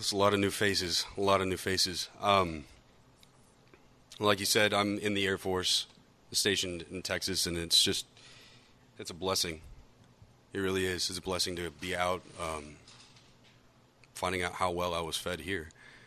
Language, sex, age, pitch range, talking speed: English, male, 30-49, 90-120 Hz, 175 wpm